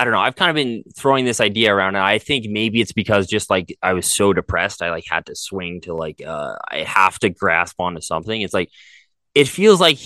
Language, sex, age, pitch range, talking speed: English, male, 20-39, 90-115 Hz, 250 wpm